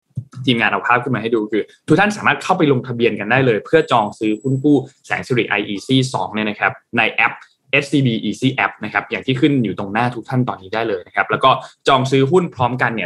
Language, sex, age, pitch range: Thai, male, 20-39, 105-140 Hz